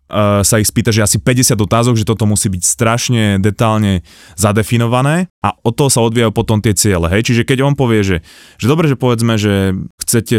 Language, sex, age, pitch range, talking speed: Slovak, male, 20-39, 100-120 Hz, 190 wpm